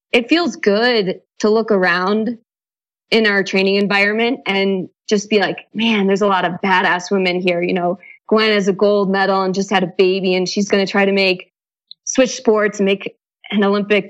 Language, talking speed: English, 195 wpm